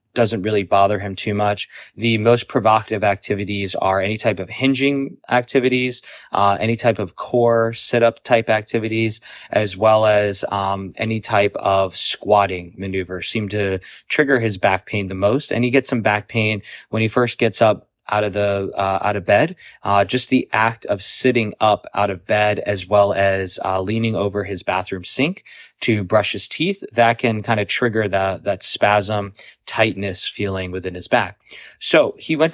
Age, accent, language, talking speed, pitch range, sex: 20-39, American, English, 180 wpm, 100-120 Hz, male